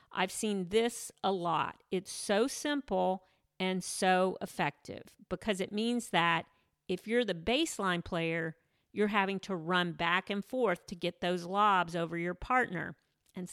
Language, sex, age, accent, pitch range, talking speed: English, female, 50-69, American, 175-215 Hz, 155 wpm